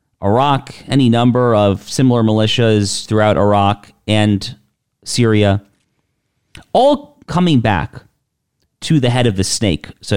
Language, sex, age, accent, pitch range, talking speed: English, male, 40-59, American, 100-125 Hz, 120 wpm